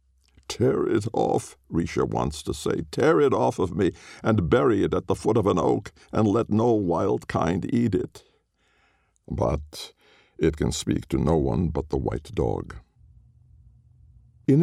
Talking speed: 165 wpm